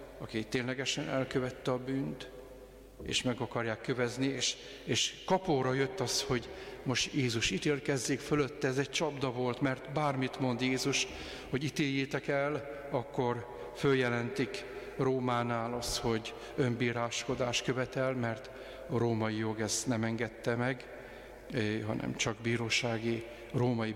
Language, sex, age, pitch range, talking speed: Hungarian, male, 50-69, 115-130 Hz, 125 wpm